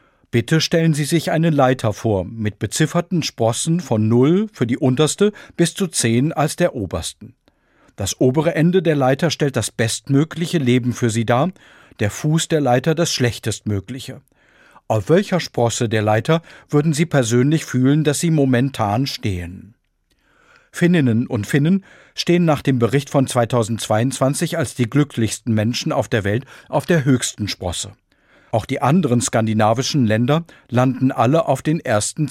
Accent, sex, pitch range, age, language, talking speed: German, male, 115-155 Hz, 50-69, German, 150 wpm